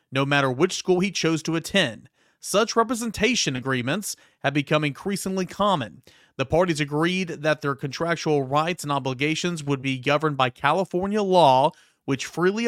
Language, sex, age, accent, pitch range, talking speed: English, male, 30-49, American, 130-165 Hz, 150 wpm